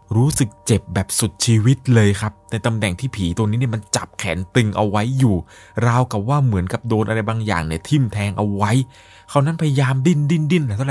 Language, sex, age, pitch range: Thai, male, 20-39, 95-125 Hz